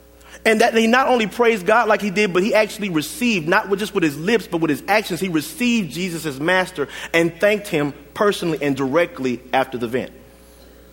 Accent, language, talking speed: American, English, 205 wpm